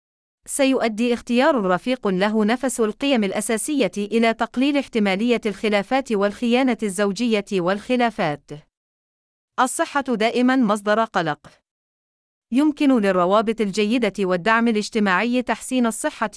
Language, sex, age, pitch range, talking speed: Arabic, female, 30-49, 195-235 Hz, 90 wpm